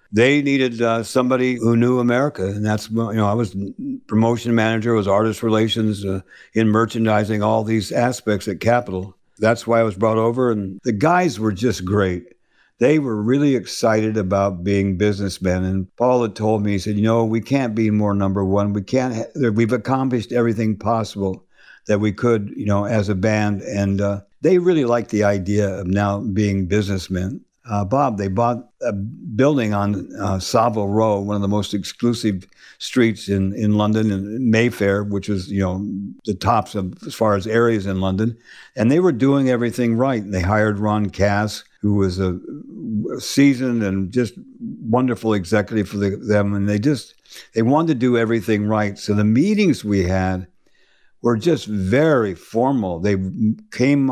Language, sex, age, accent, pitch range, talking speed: English, male, 60-79, American, 100-120 Hz, 180 wpm